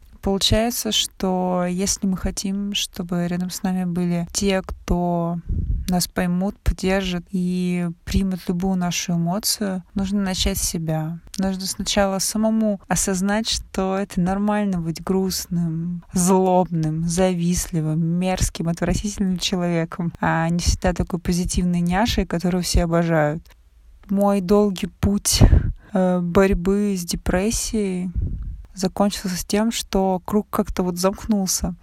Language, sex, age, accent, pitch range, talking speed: Russian, female, 20-39, native, 175-200 Hz, 115 wpm